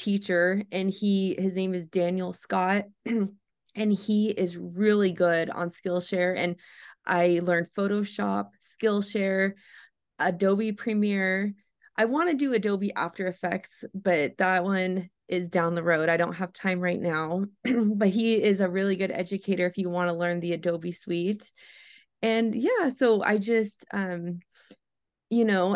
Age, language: 20-39, English